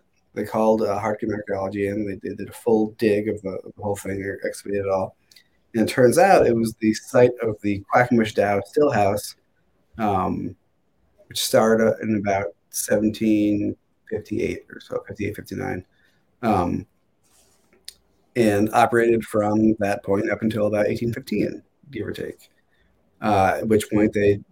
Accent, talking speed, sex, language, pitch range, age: American, 155 wpm, male, English, 100-110 Hz, 30-49